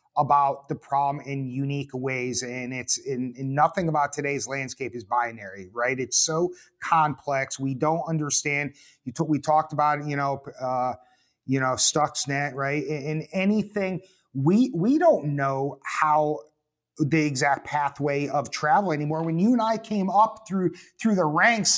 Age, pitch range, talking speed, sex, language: 30-49, 140-185 Hz, 155 wpm, male, English